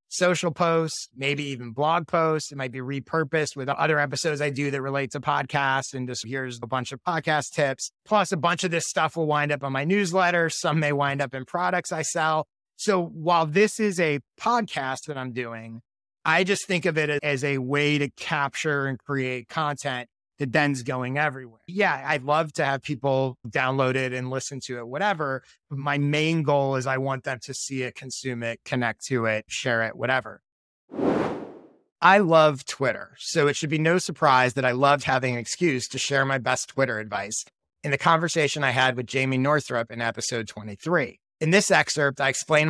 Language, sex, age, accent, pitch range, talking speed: English, male, 30-49, American, 130-155 Hz, 200 wpm